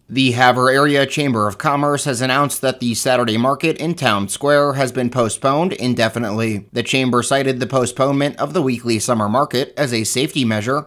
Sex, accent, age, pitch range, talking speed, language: male, American, 30-49, 115-140 Hz, 180 wpm, English